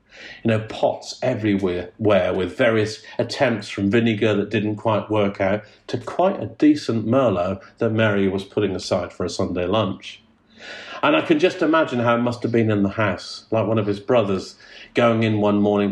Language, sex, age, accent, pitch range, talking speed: English, male, 50-69, British, 100-120 Hz, 190 wpm